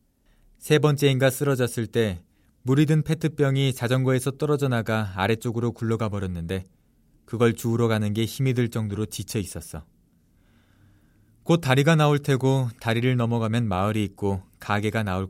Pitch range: 105-130 Hz